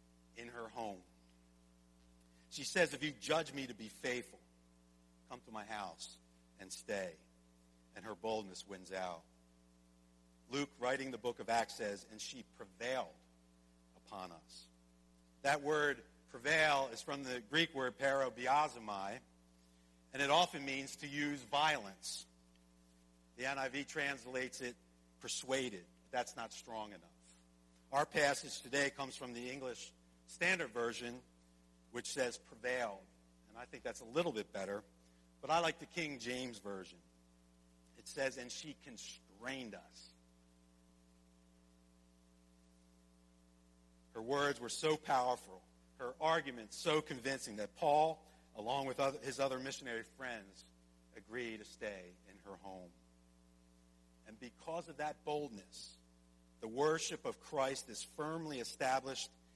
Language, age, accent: English, 50-69, American